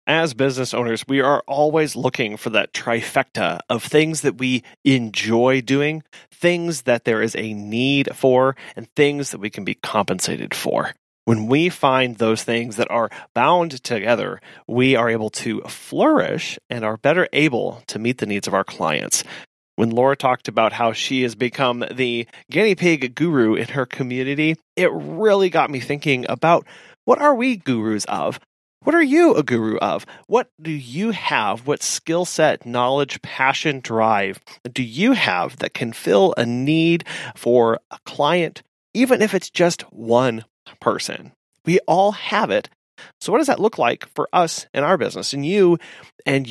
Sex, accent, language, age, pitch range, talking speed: male, American, English, 30-49, 120-160 Hz, 170 wpm